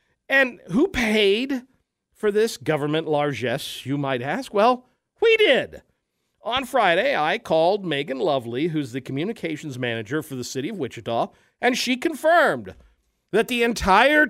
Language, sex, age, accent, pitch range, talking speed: English, male, 50-69, American, 175-275 Hz, 145 wpm